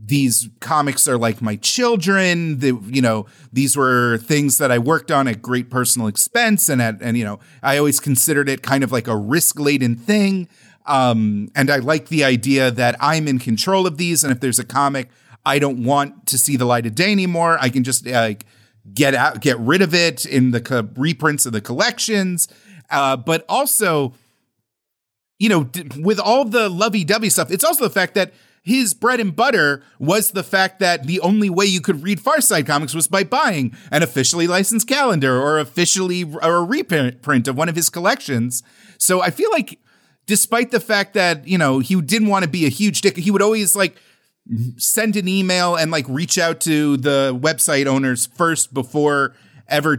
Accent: American